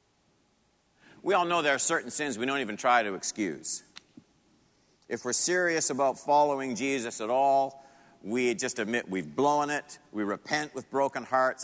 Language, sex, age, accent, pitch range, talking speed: English, male, 50-69, American, 115-155 Hz, 165 wpm